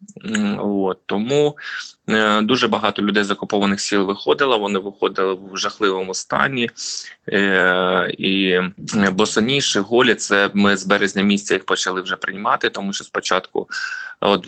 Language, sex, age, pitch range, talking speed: Ukrainian, male, 20-39, 95-110 Hz, 140 wpm